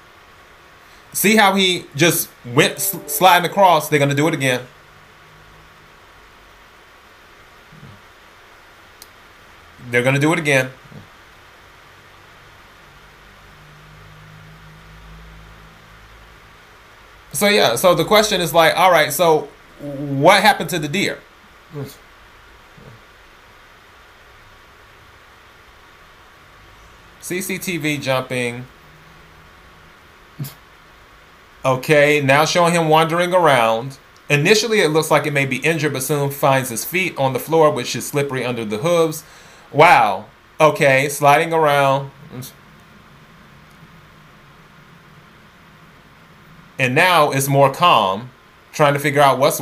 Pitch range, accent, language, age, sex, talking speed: 120-160 Hz, American, English, 20-39, male, 95 wpm